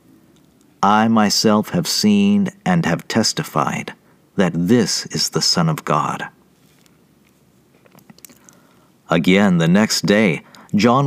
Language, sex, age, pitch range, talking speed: English, male, 50-69, 120-170 Hz, 105 wpm